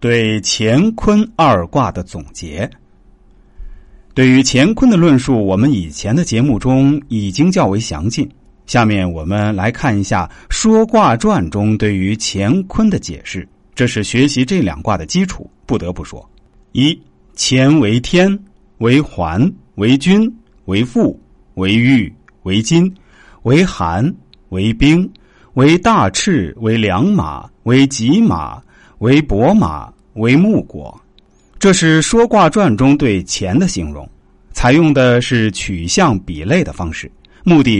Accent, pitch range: native, 100-155 Hz